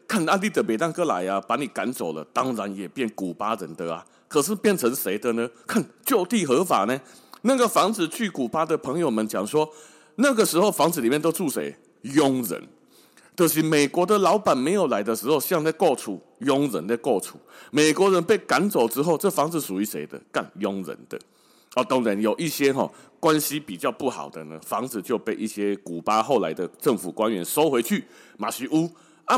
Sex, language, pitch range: male, Chinese, 115-170 Hz